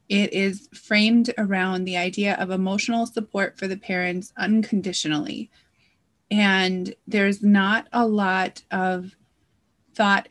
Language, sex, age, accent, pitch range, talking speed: English, female, 30-49, American, 185-220 Hz, 115 wpm